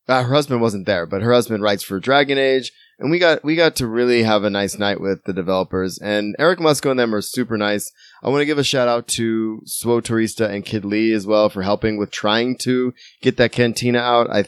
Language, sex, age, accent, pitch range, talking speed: English, male, 20-39, American, 100-125 Hz, 240 wpm